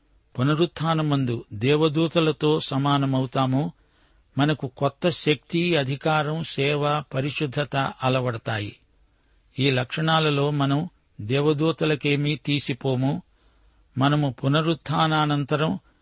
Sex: male